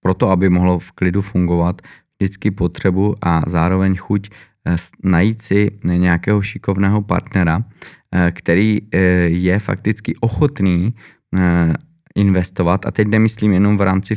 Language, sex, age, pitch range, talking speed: Czech, male, 20-39, 95-105 Hz, 115 wpm